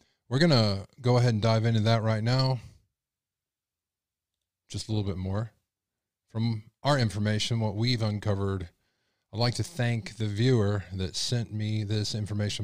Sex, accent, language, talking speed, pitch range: male, American, English, 155 wpm, 100-120 Hz